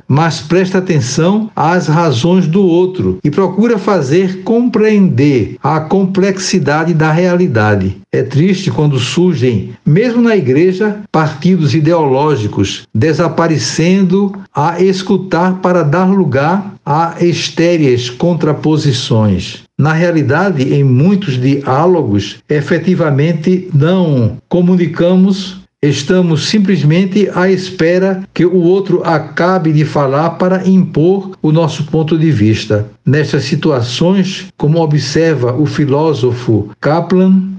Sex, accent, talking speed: male, Brazilian, 105 wpm